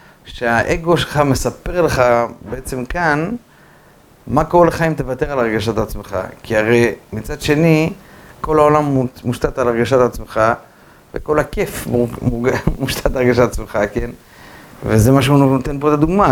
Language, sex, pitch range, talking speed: Hebrew, male, 125-165 Hz, 140 wpm